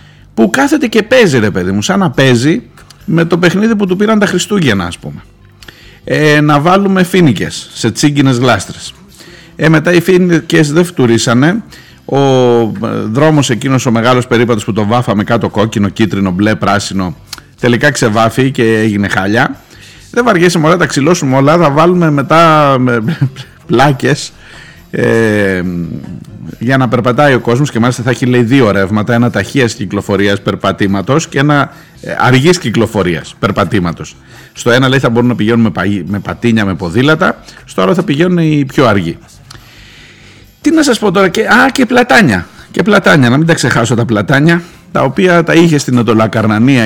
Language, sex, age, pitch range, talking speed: Greek, male, 50-69, 110-165 Hz, 160 wpm